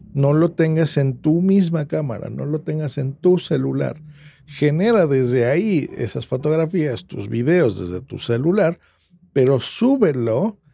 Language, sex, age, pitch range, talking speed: Spanish, male, 50-69, 130-165 Hz, 140 wpm